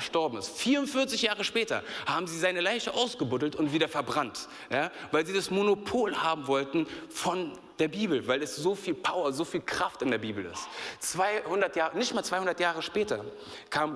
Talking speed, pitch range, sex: 185 wpm, 140-195 Hz, male